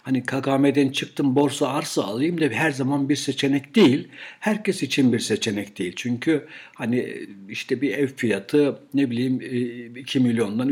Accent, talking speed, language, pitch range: native, 150 wpm, Turkish, 125-155 Hz